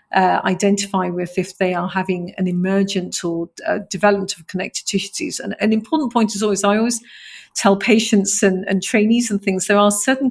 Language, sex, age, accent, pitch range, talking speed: English, female, 40-59, British, 170-200 Hz, 200 wpm